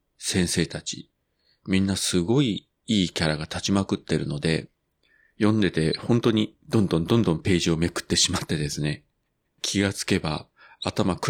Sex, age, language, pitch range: male, 40-59, Japanese, 80-105 Hz